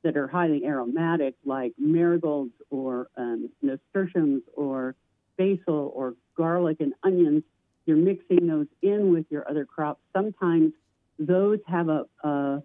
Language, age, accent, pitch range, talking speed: English, 50-69, American, 150-185 Hz, 135 wpm